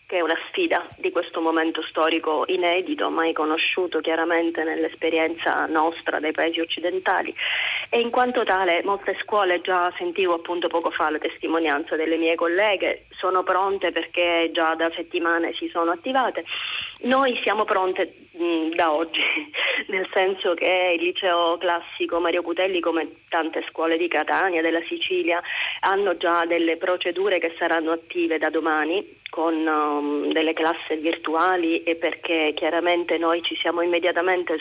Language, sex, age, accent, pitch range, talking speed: Italian, female, 20-39, native, 165-185 Hz, 140 wpm